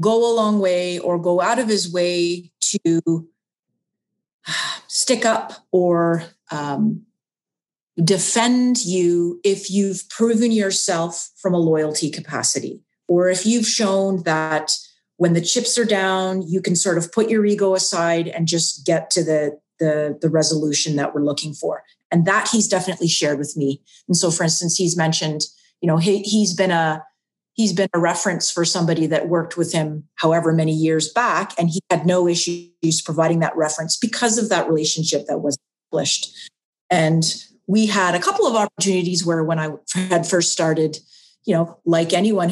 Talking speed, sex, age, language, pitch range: 170 wpm, female, 30-49, English, 165-195 Hz